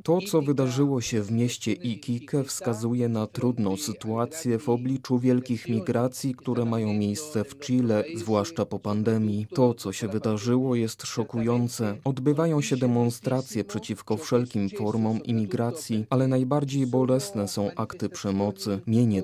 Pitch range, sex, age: 105-125 Hz, male, 20-39